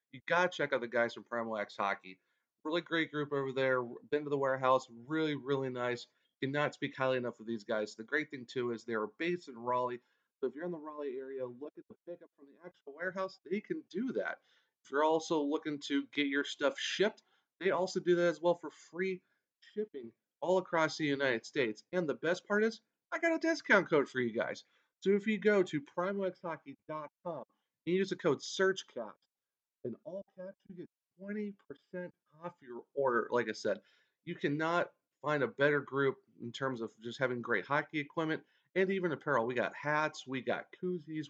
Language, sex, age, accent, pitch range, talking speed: English, male, 30-49, American, 135-180 Hz, 205 wpm